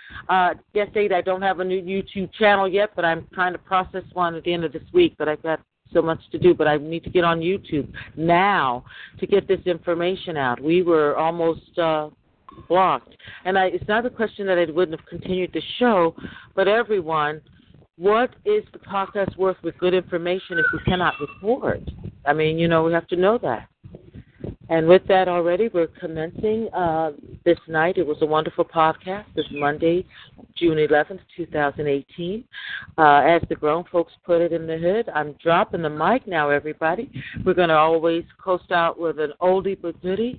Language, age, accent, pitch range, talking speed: English, 50-69, American, 160-185 Hz, 195 wpm